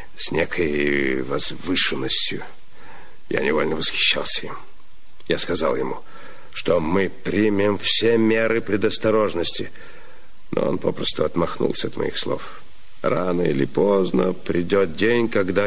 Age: 60-79